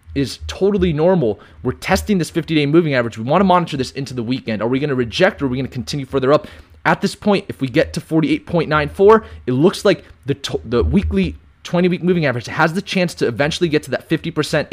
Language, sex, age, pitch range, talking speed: English, male, 20-39, 115-175 Hz, 255 wpm